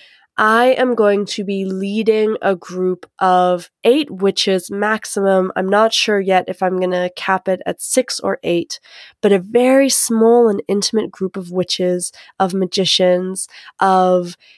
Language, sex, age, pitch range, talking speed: English, female, 20-39, 185-220 Hz, 155 wpm